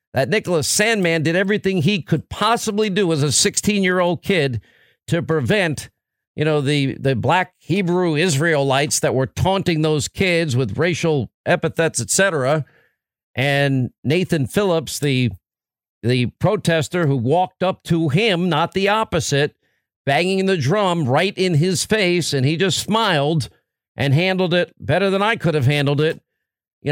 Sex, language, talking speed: male, English, 155 wpm